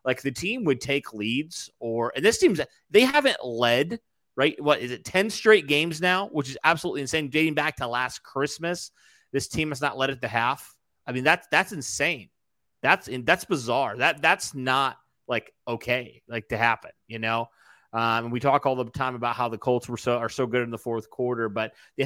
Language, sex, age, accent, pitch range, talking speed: English, male, 30-49, American, 115-140 Hz, 215 wpm